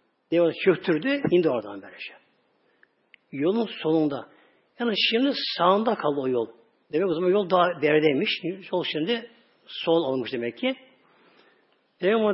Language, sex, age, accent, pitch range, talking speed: Turkish, male, 60-79, native, 150-220 Hz, 125 wpm